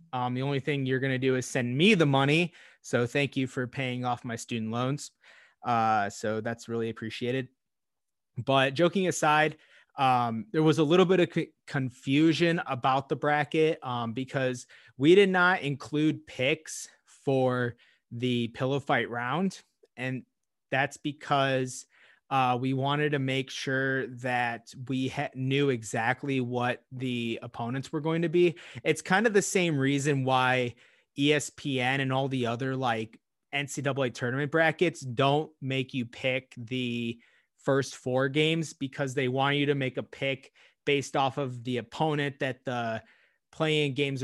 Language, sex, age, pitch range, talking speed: English, male, 30-49, 125-145 Hz, 155 wpm